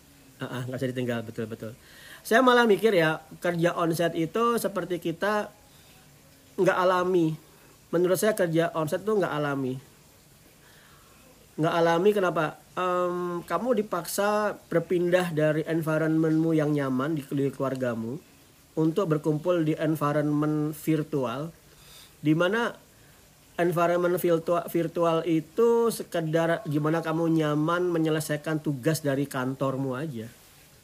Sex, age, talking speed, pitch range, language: male, 40-59, 110 wpm, 140-175 Hz, Indonesian